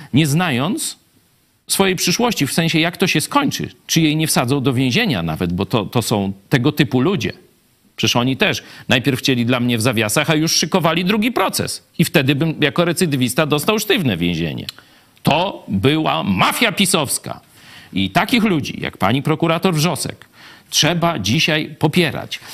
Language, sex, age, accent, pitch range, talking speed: Polish, male, 50-69, native, 115-160 Hz, 160 wpm